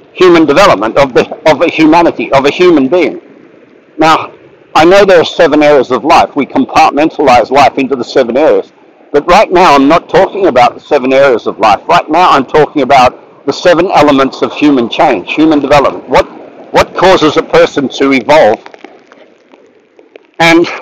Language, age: English, 60-79